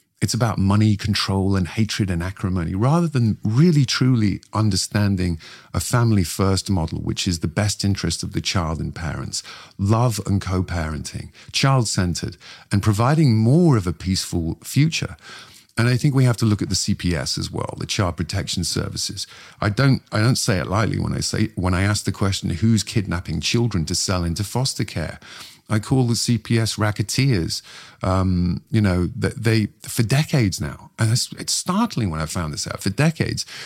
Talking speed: 180 wpm